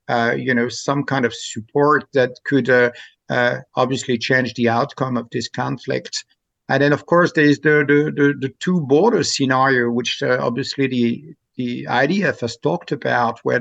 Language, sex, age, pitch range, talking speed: English, male, 60-79, 125-145 Hz, 180 wpm